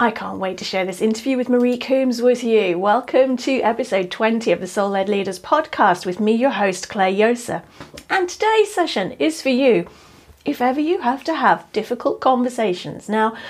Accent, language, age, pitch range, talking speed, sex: British, English, 40-59, 205-270 Hz, 190 wpm, female